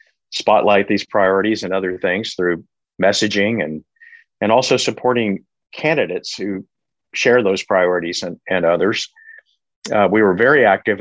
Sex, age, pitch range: male, 50-69, 90-110 Hz